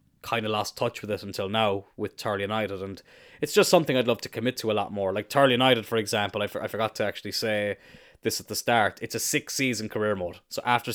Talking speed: 260 wpm